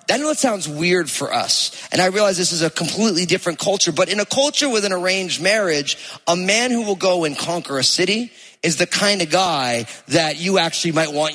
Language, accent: English, American